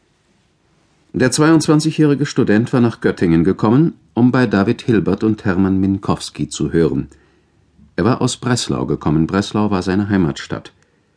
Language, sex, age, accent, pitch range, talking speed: German, male, 50-69, German, 85-125 Hz, 135 wpm